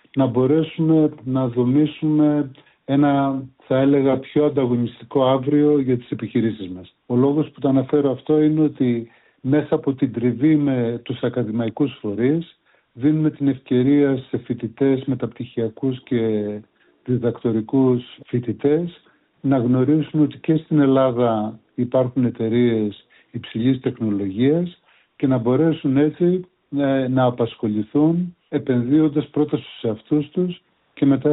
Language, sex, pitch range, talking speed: Greek, male, 120-150 Hz, 120 wpm